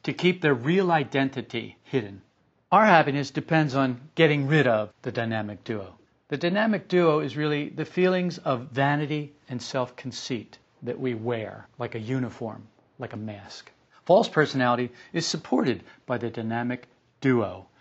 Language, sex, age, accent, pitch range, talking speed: English, male, 50-69, American, 120-150 Hz, 150 wpm